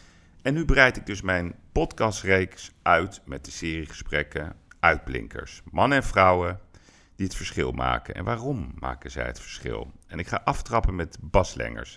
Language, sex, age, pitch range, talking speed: Dutch, male, 40-59, 80-105 Hz, 160 wpm